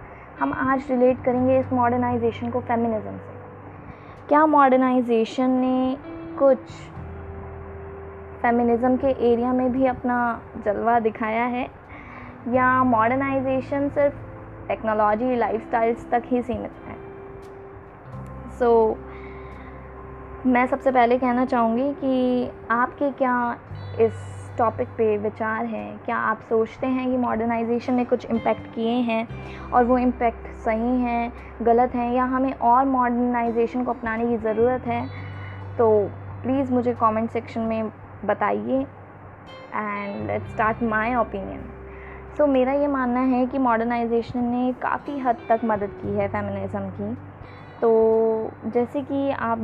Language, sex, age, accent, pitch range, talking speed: Hindi, female, 20-39, native, 205-255 Hz, 125 wpm